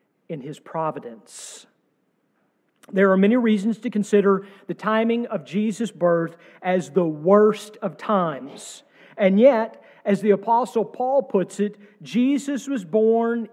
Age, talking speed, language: 50-69, 135 wpm, English